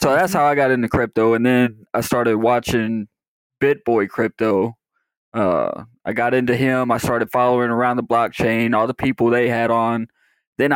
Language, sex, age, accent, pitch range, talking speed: English, male, 20-39, American, 115-130 Hz, 180 wpm